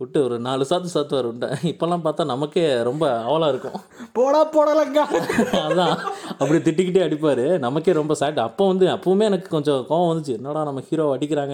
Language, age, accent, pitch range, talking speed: Tamil, 20-39, native, 140-190 Hz, 165 wpm